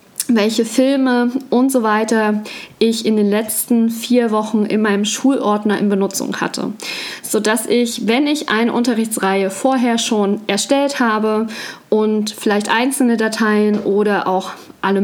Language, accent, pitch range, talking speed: German, German, 210-260 Hz, 135 wpm